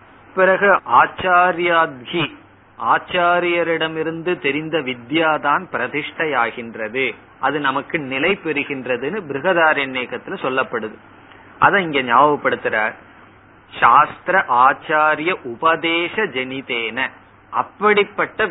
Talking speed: 60 wpm